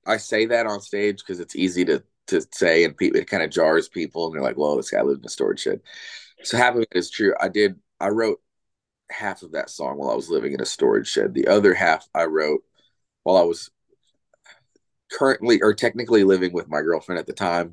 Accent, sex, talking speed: American, male, 230 wpm